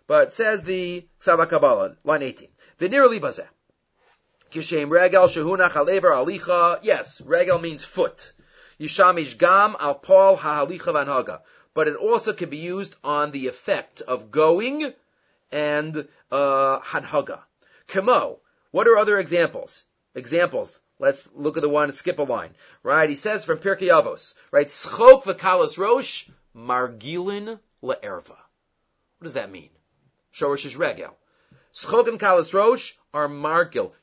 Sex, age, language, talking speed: male, 40-59, English, 130 wpm